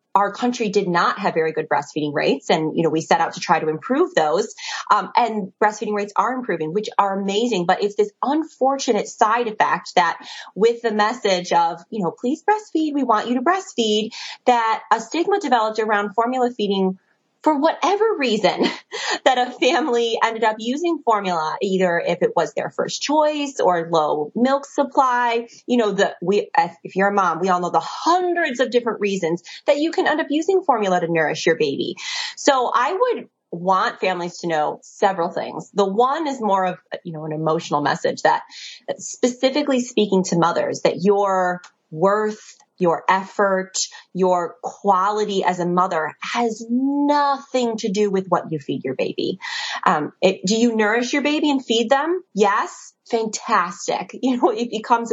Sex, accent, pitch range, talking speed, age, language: female, American, 185-275 Hz, 180 wpm, 20-39, English